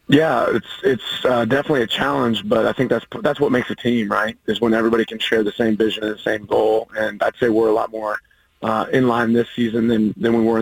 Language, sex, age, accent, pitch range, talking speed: English, male, 30-49, American, 110-120 Hz, 255 wpm